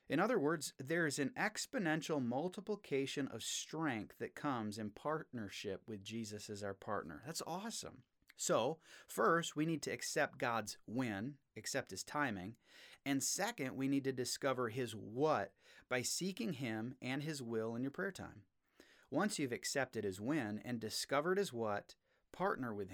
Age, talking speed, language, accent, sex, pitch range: 30-49, 160 wpm, English, American, male, 115-150 Hz